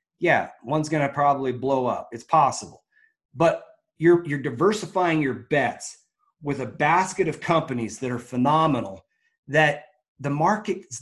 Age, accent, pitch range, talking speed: 30-49, American, 125-160 Hz, 145 wpm